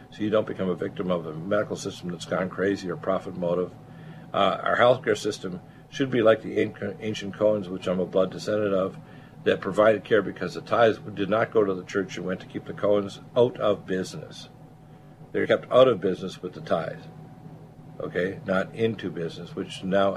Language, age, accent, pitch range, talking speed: English, 60-79, American, 95-140 Hz, 200 wpm